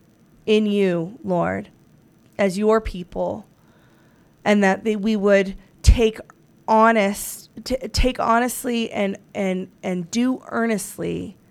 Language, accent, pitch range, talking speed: English, American, 190-220 Hz, 110 wpm